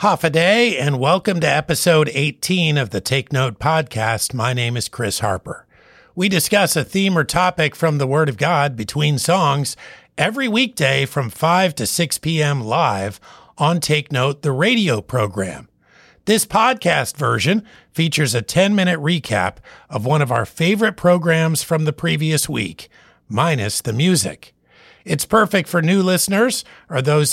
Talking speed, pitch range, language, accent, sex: 160 wpm, 135-180 Hz, English, American, male